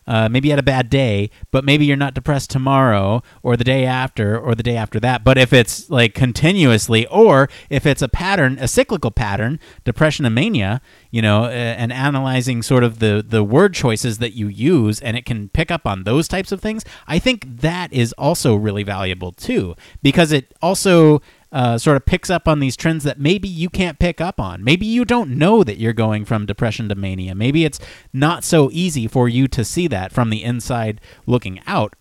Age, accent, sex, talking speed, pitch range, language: 30-49, American, male, 215 wpm, 115-160 Hz, English